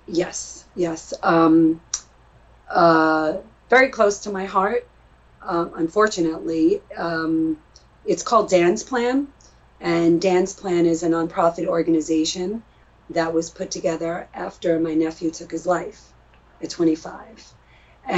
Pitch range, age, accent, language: 155-180 Hz, 30-49, American, English